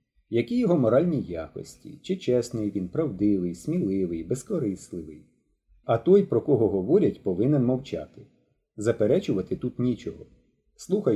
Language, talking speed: Ukrainian, 115 wpm